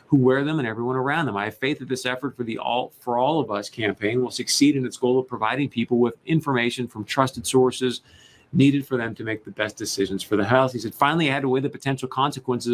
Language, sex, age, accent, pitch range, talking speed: English, male, 40-59, American, 120-135 Hz, 255 wpm